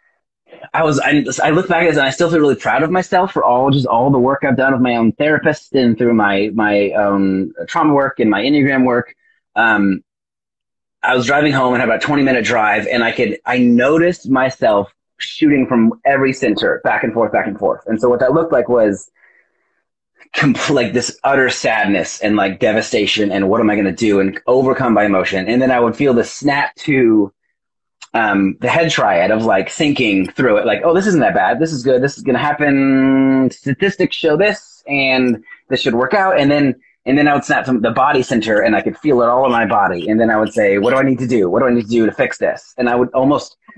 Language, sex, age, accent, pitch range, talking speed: English, male, 30-49, American, 115-140 Hz, 240 wpm